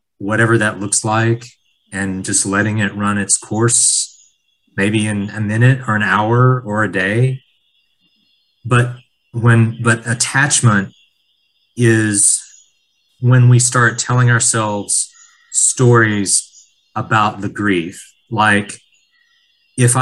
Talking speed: 110 wpm